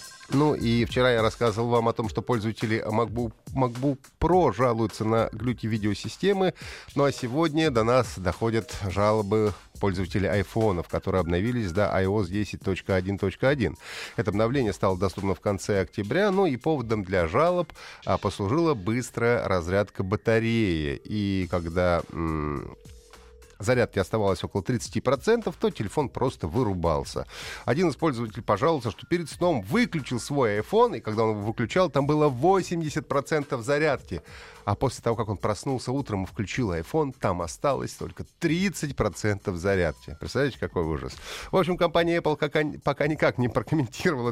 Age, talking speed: 30-49, 140 wpm